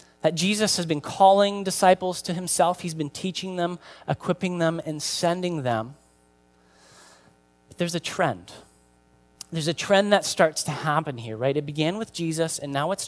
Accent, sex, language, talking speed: American, male, English, 165 wpm